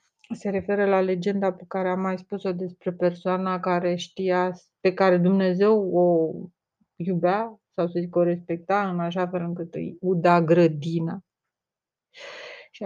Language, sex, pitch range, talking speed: Romanian, female, 170-185 Hz, 145 wpm